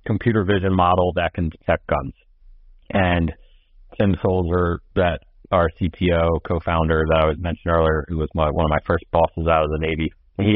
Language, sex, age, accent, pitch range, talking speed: English, male, 30-49, American, 80-95 Hz, 170 wpm